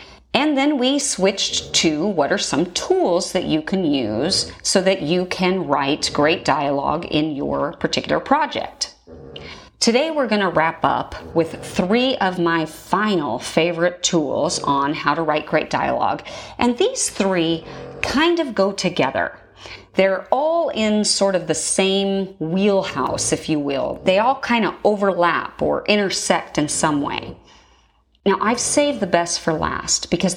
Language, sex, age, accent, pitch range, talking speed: English, female, 30-49, American, 155-215 Hz, 155 wpm